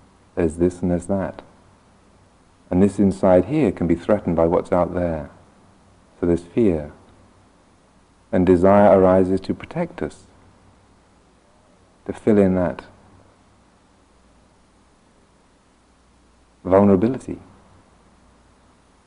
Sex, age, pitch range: male, 50-69, 90-100 Hz